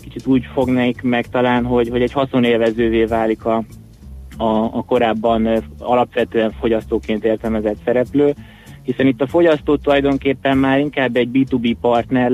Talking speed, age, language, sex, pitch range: 135 wpm, 20-39, Hungarian, male, 110-125 Hz